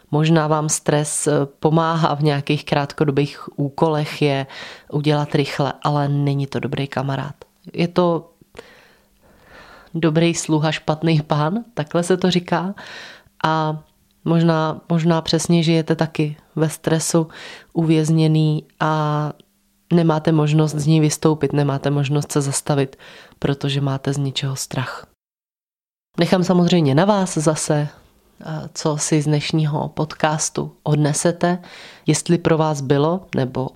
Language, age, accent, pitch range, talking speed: Czech, 20-39, native, 145-165 Hz, 115 wpm